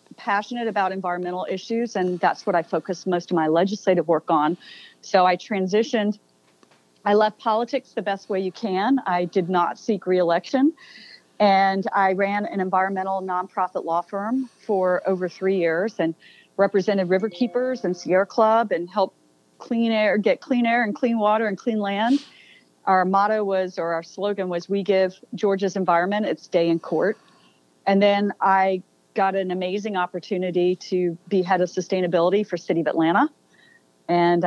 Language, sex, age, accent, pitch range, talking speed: English, female, 40-59, American, 180-220 Hz, 165 wpm